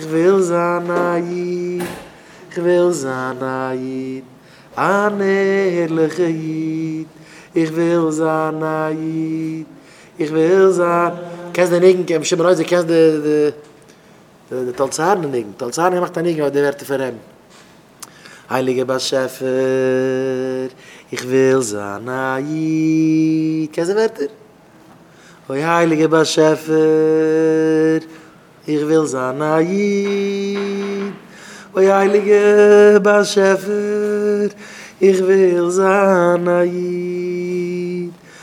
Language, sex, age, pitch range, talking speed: English, male, 30-49, 155-180 Hz, 60 wpm